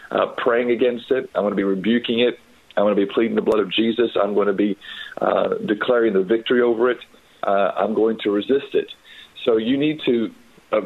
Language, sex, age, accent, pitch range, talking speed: English, male, 40-59, American, 105-125 Hz, 220 wpm